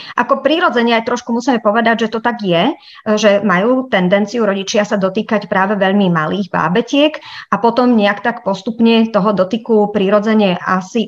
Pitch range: 195-230 Hz